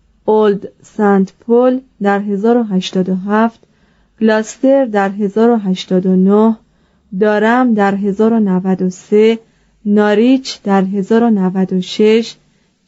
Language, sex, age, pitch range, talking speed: Persian, female, 30-49, 195-235 Hz, 65 wpm